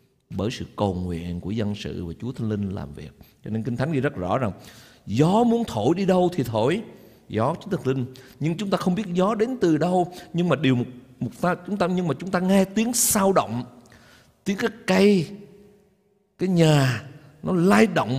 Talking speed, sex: 215 wpm, male